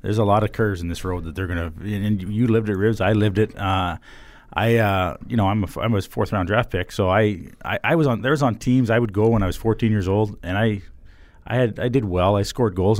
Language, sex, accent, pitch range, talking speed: English, male, American, 95-120 Hz, 280 wpm